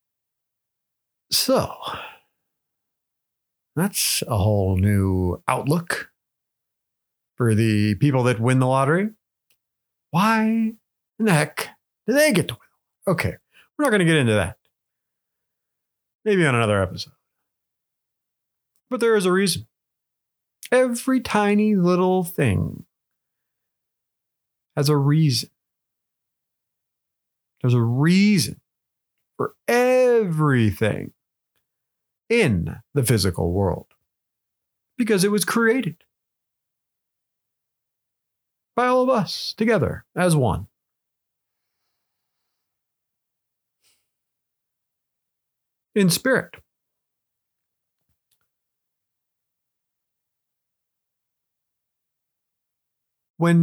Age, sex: 40-59, male